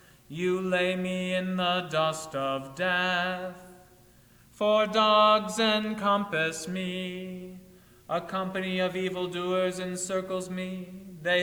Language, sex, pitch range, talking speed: English, male, 180-195 Hz, 100 wpm